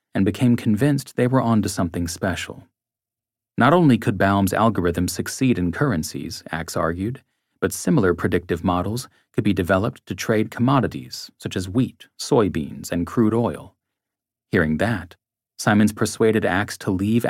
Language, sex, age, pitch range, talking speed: English, male, 40-59, 90-115 Hz, 150 wpm